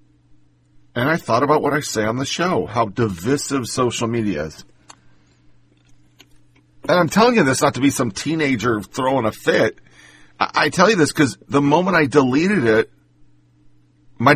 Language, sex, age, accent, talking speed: English, male, 40-59, American, 165 wpm